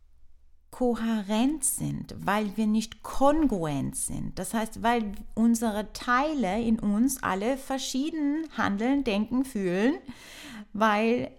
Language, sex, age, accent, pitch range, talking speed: German, female, 30-49, German, 185-235 Hz, 105 wpm